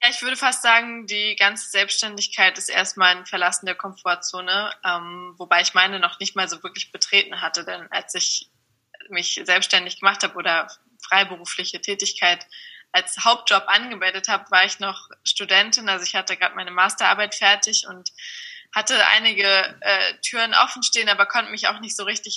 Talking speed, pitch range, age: 170 wpm, 185-220 Hz, 20-39